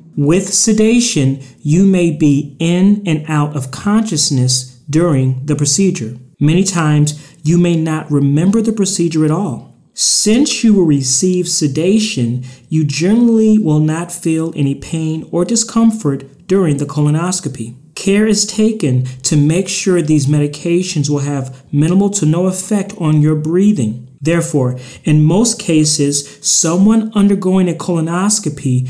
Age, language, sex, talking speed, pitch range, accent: 40-59, English, male, 135 wpm, 145-185 Hz, American